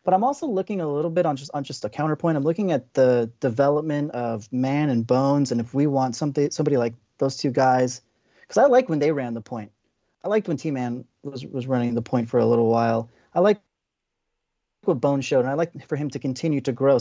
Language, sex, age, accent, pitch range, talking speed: English, male, 30-49, American, 120-155 Hz, 240 wpm